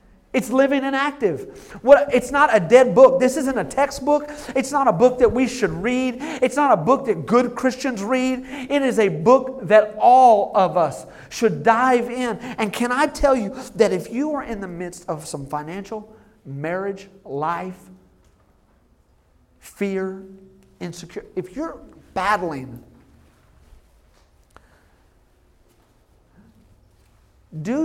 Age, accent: 50-69, American